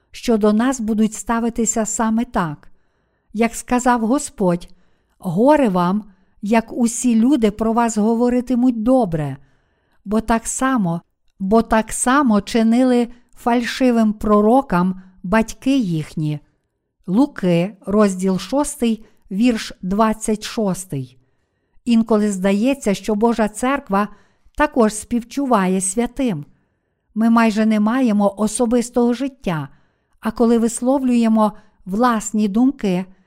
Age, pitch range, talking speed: 50-69, 200-240 Hz, 95 wpm